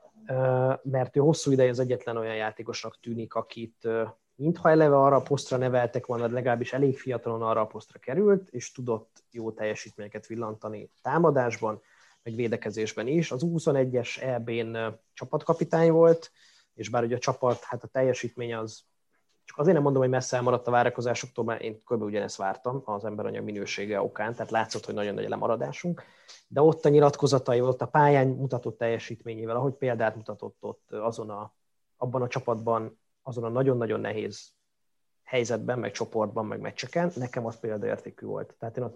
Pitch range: 115-135 Hz